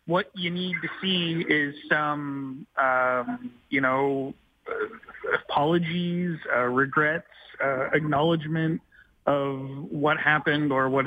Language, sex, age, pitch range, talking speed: English, male, 30-49, 130-155 Hz, 115 wpm